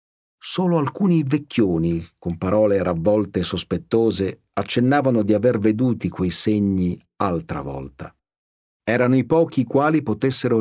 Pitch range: 90-125 Hz